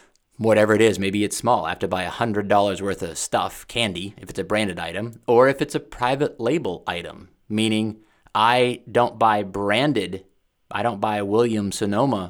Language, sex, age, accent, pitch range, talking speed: English, male, 30-49, American, 100-125 Hz, 180 wpm